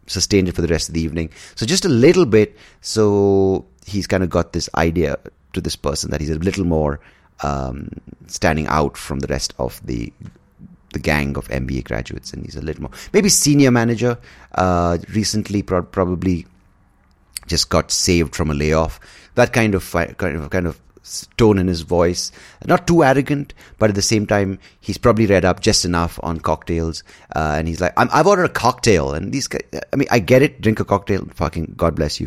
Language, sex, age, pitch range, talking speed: English, male, 30-49, 80-110 Hz, 200 wpm